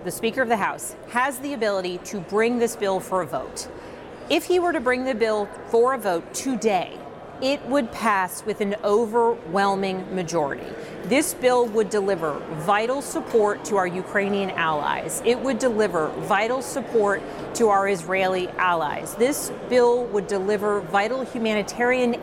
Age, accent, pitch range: 30-49, American, 200-260 Hz